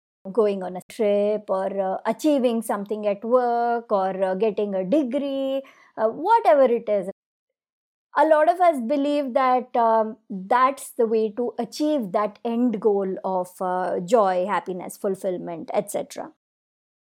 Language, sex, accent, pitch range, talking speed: English, male, Indian, 210-275 Hz, 140 wpm